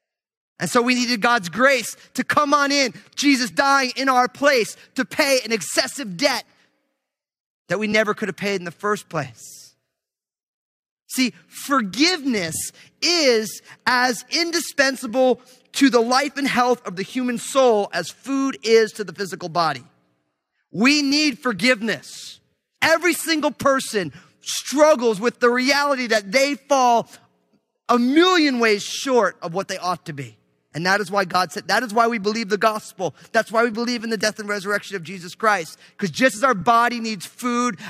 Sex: male